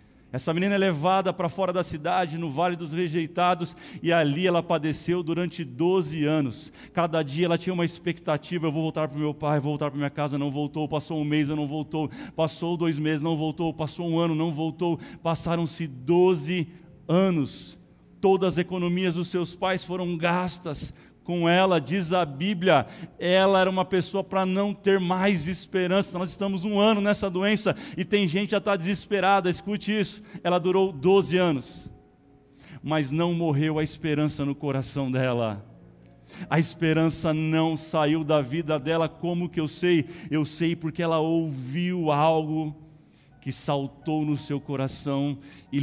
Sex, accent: male, Brazilian